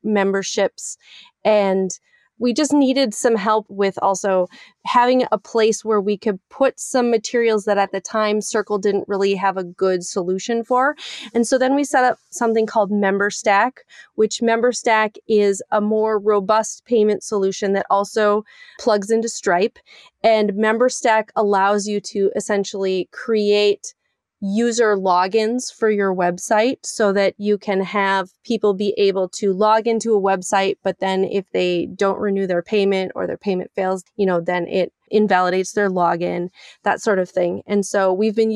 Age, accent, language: 30-49, American, English